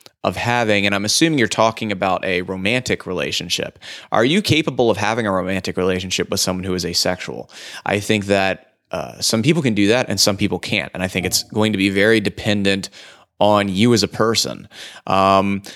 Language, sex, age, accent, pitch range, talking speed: English, male, 20-39, American, 95-110 Hz, 200 wpm